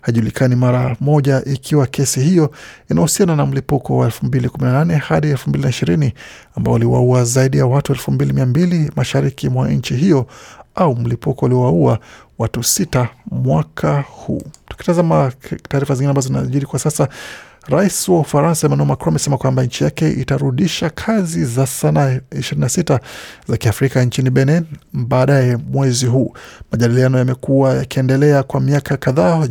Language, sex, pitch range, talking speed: Swahili, male, 125-150 Hz, 135 wpm